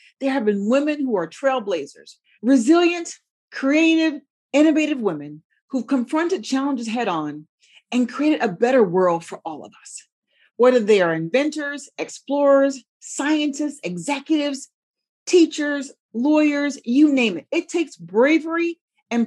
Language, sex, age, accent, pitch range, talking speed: English, female, 40-59, American, 205-290 Hz, 125 wpm